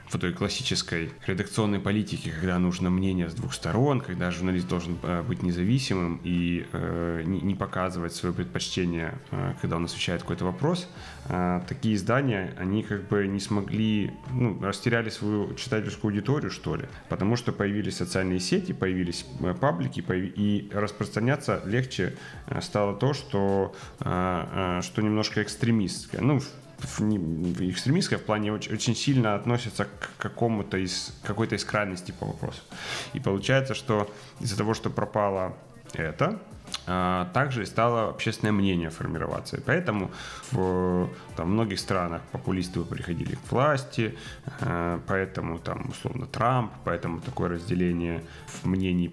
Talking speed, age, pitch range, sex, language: 125 wpm, 20-39, 90-115 Hz, male, Ukrainian